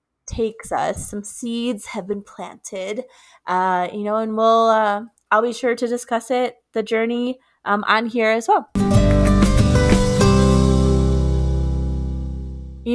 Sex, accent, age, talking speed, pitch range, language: female, American, 20-39, 125 wpm, 190-240 Hz, English